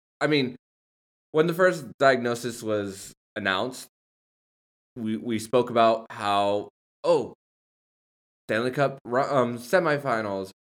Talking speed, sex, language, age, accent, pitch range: 100 wpm, male, English, 20-39, American, 100-125 Hz